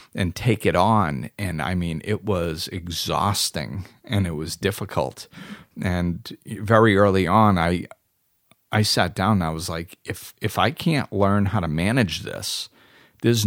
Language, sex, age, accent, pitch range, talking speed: English, male, 40-59, American, 85-110 Hz, 160 wpm